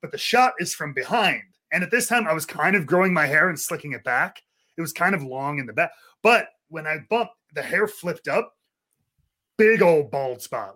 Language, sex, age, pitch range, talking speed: English, male, 30-49, 150-195 Hz, 230 wpm